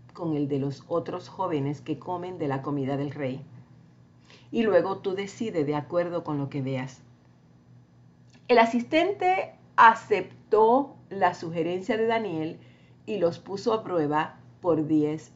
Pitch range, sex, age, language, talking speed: 140-195 Hz, female, 50-69, Spanish, 145 wpm